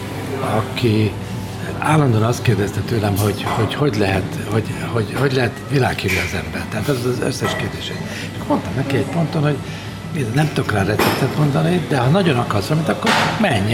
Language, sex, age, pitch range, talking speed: Hungarian, male, 60-79, 100-130 Hz, 165 wpm